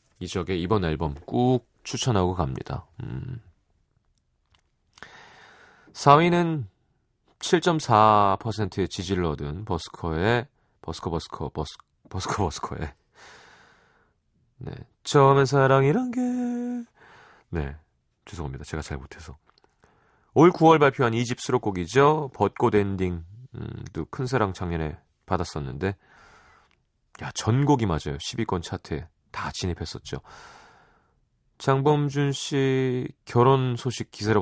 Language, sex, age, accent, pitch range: Korean, male, 30-49, native, 85-130 Hz